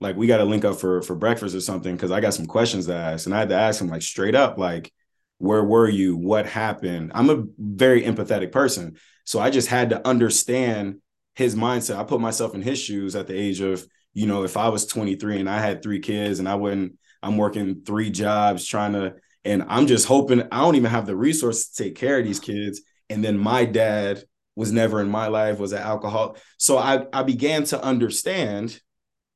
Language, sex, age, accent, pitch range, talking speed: English, male, 20-39, American, 100-125 Hz, 225 wpm